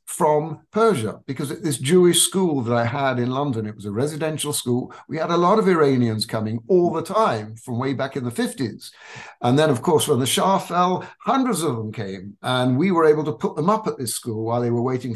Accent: British